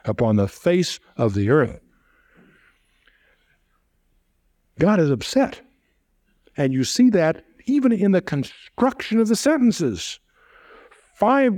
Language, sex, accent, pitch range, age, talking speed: English, male, American, 120-180 Hz, 60-79, 110 wpm